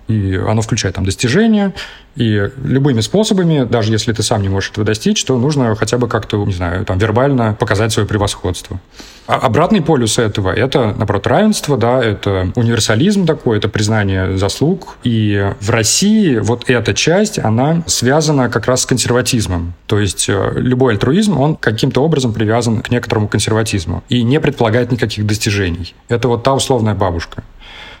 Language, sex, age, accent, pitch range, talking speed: Russian, male, 30-49, native, 100-125 Hz, 160 wpm